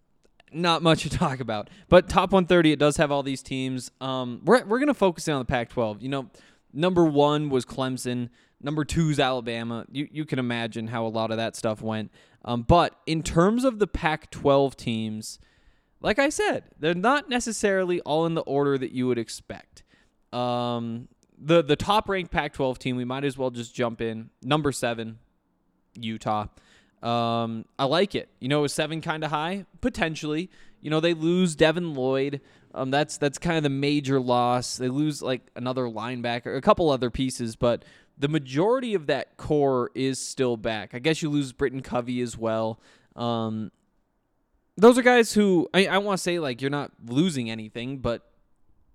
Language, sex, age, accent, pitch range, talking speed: English, male, 20-39, American, 120-160 Hz, 185 wpm